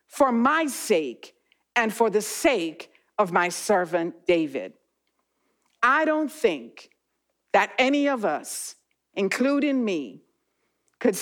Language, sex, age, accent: English, female, 50-69, American